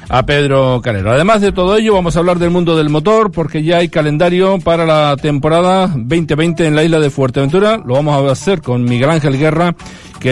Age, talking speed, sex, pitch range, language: 40-59, 210 wpm, male, 140-170 Hz, Spanish